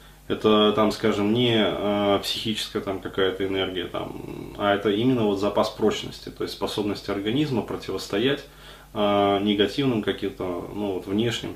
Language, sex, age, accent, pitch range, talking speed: Russian, male, 20-39, native, 100-115 Hz, 140 wpm